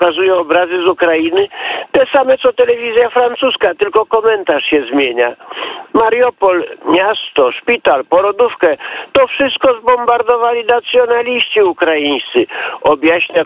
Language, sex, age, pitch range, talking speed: Polish, male, 50-69, 150-245 Hz, 105 wpm